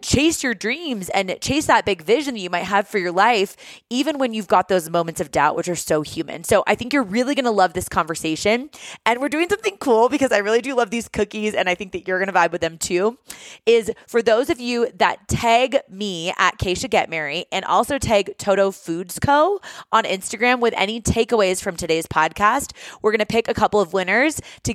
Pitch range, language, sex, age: 180-240 Hz, English, female, 20-39